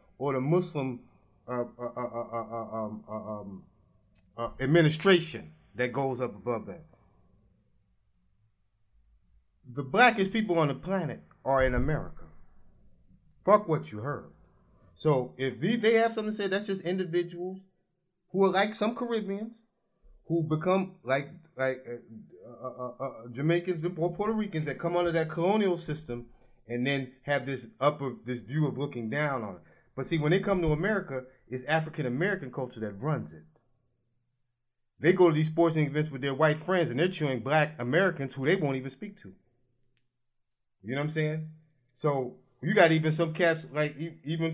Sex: male